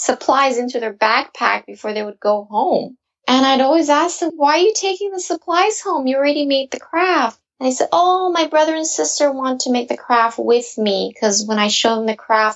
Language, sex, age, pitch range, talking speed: English, female, 20-39, 205-270 Hz, 230 wpm